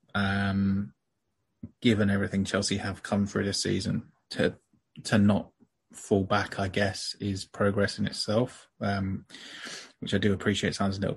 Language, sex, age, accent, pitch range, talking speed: English, male, 20-39, British, 95-105 Hz, 150 wpm